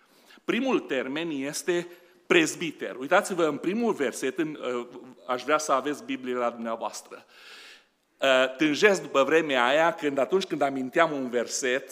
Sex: male